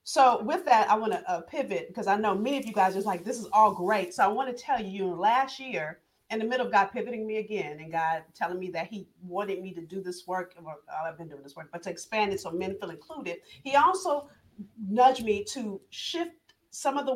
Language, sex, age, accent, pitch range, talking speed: English, female, 40-59, American, 185-245 Hz, 250 wpm